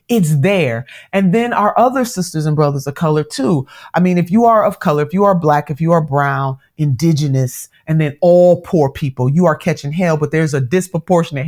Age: 30-49